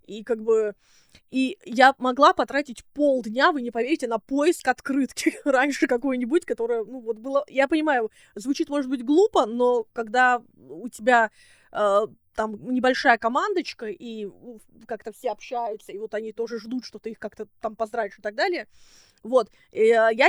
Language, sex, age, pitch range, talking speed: Russian, female, 20-39, 215-260 Hz, 160 wpm